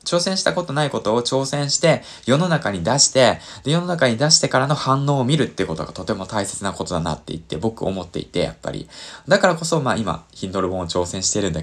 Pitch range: 85-125 Hz